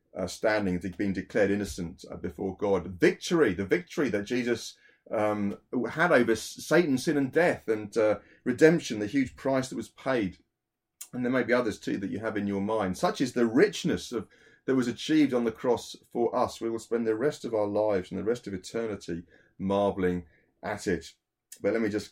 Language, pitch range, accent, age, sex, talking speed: English, 95-120 Hz, British, 30-49, male, 200 wpm